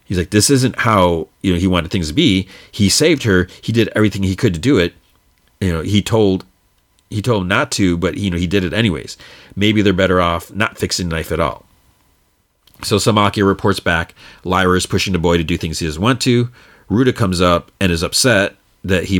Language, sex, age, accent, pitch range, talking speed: English, male, 40-59, American, 85-100 Hz, 230 wpm